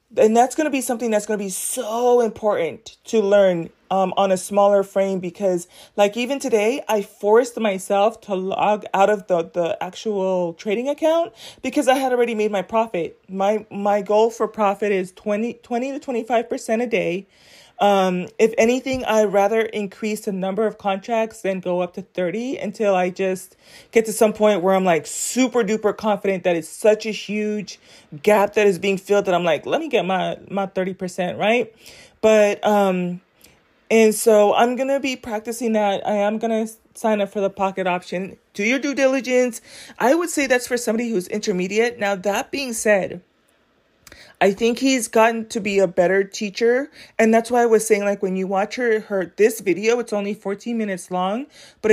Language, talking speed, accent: English, 195 wpm, American